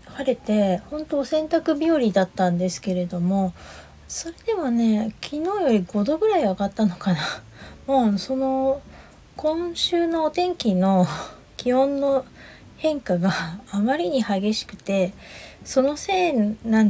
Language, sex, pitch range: Japanese, female, 190-270 Hz